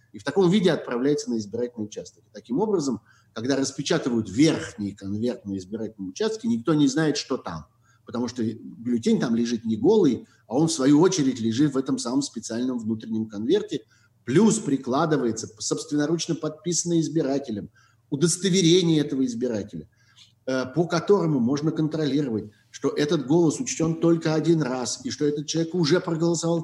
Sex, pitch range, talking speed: male, 115-165 Hz, 150 wpm